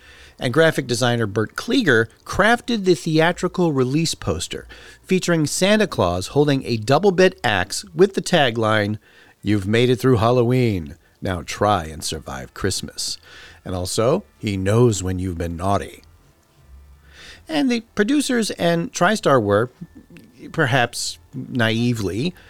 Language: English